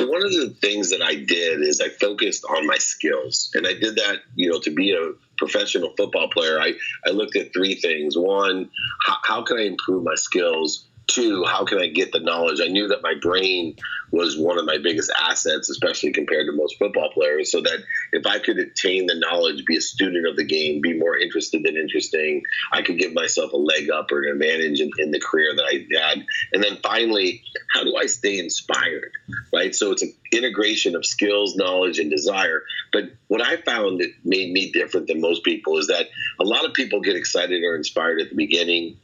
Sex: male